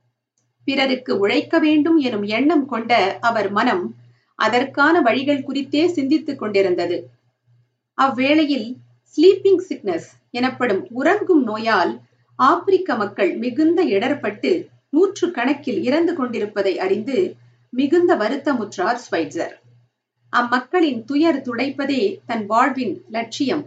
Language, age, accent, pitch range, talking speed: Tamil, 50-69, native, 195-295 Hz, 85 wpm